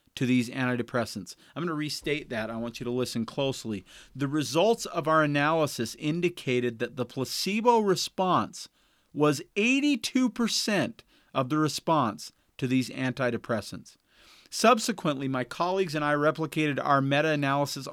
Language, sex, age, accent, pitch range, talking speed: English, male, 40-59, American, 125-170 Hz, 135 wpm